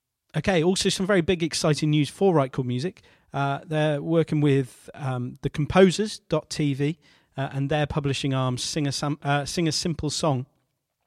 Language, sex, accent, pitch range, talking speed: English, male, British, 125-150 Hz, 175 wpm